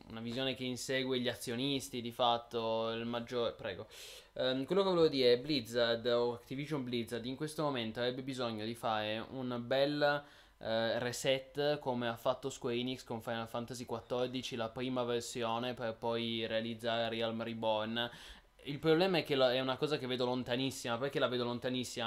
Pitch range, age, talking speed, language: 120-140 Hz, 20-39, 170 wpm, Italian